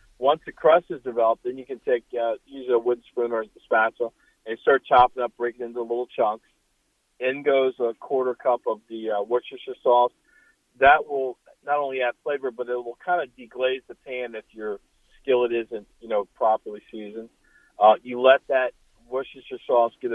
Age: 40-59